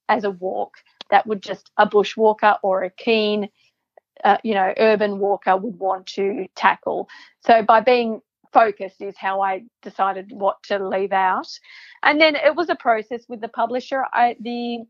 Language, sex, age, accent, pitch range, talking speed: English, female, 40-59, Australian, 200-235 Hz, 170 wpm